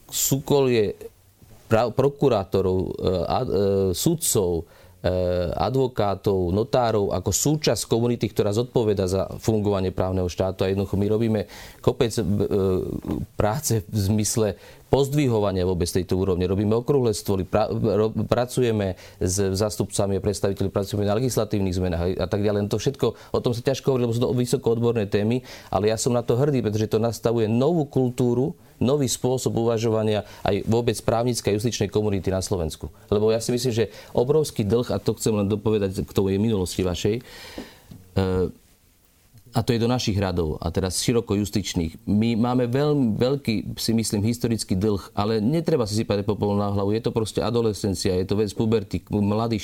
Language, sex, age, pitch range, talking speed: Slovak, male, 30-49, 100-120 Hz, 165 wpm